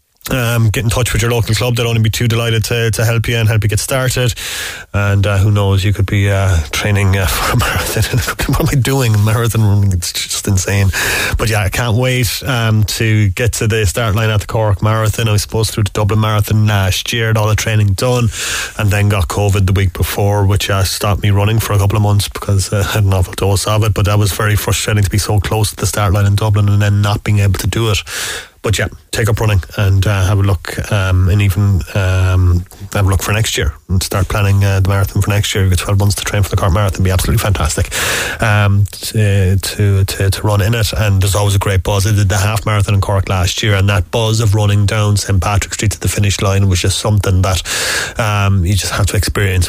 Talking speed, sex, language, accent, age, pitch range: 255 wpm, male, English, Irish, 30-49, 95-110 Hz